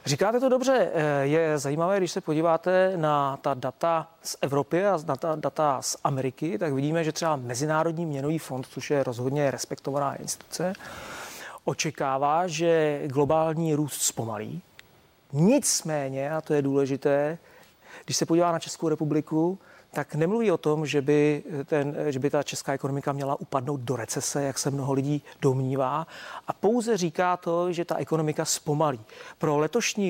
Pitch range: 140-170 Hz